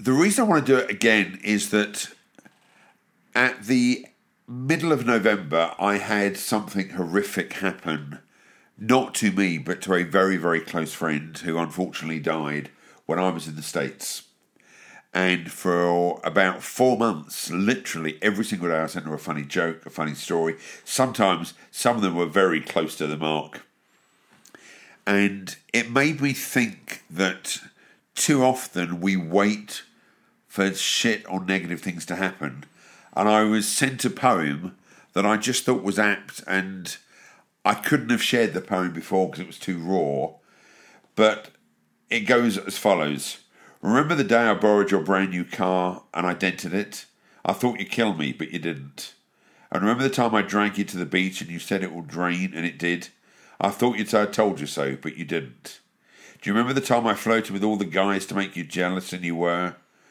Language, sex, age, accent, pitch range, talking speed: English, male, 50-69, British, 85-110 Hz, 185 wpm